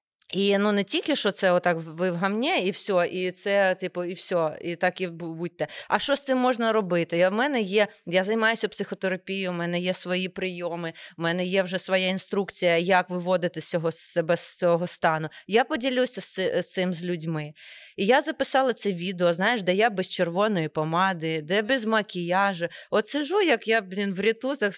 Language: Ukrainian